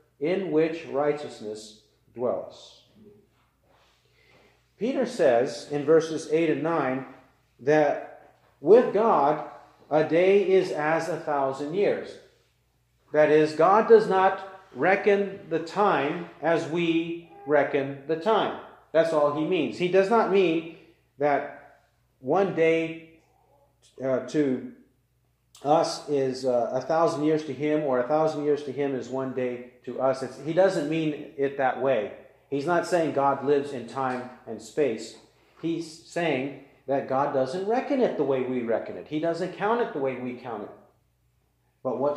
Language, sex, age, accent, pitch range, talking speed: English, male, 40-59, American, 130-170 Hz, 145 wpm